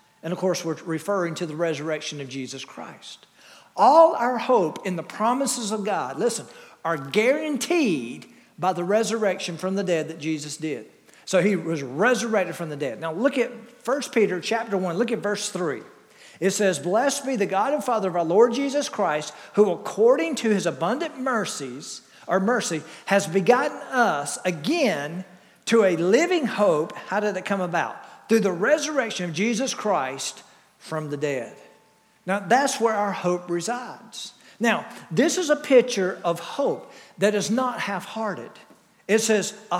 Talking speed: 170 wpm